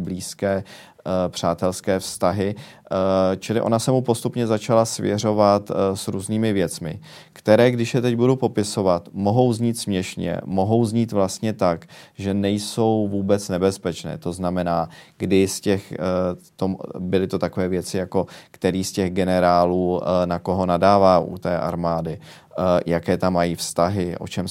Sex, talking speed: male, 135 wpm